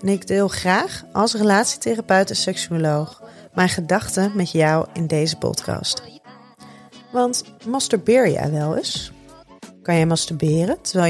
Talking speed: 130 wpm